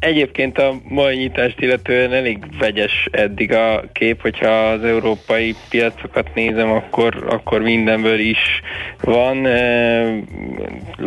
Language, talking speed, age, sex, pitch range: Hungarian, 115 wpm, 20-39, male, 105-115 Hz